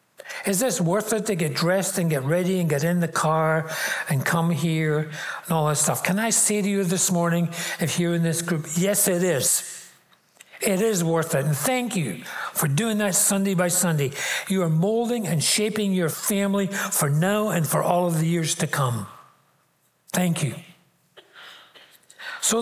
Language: English